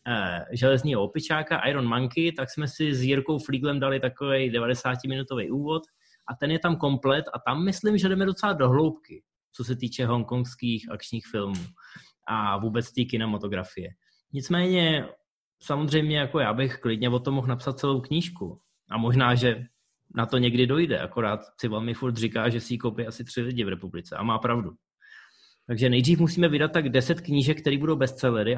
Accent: native